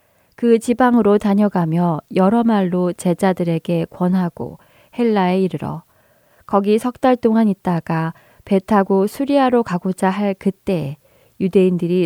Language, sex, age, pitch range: Korean, female, 20-39, 170-210 Hz